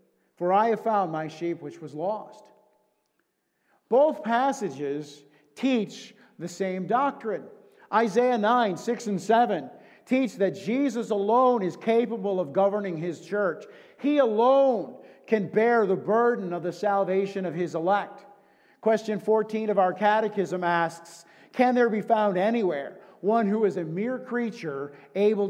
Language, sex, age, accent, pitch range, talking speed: English, male, 50-69, American, 180-235 Hz, 140 wpm